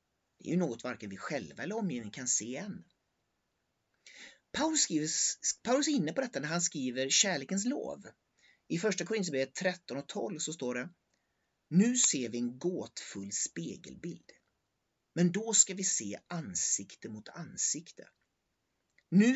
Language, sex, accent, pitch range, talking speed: Swedish, male, native, 120-200 Hz, 145 wpm